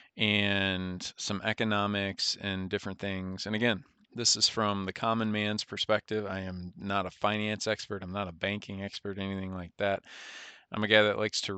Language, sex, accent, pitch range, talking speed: English, male, American, 95-110 Hz, 185 wpm